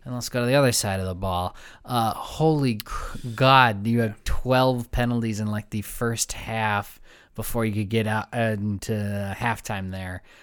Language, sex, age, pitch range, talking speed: English, male, 20-39, 105-135 Hz, 175 wpm